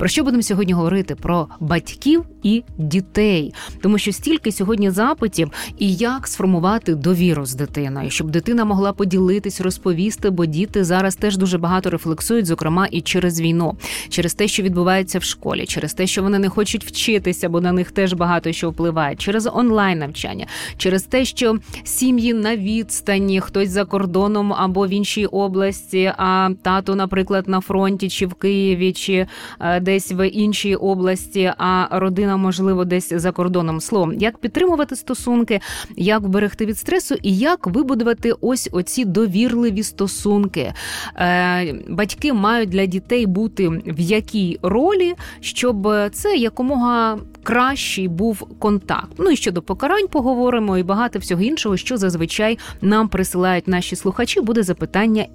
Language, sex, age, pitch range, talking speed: Ukrainian, female, 20-39, 180-220 Hz, 150 wpm